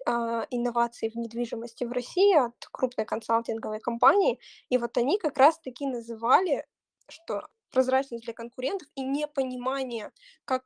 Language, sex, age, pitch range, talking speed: Russian, female, 20-39, 235-275 Hz, 130 wpm